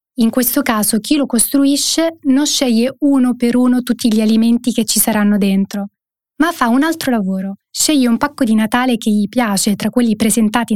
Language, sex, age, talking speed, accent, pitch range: Italian, female, 20-39, 190 wpm, native, 215-275 Hz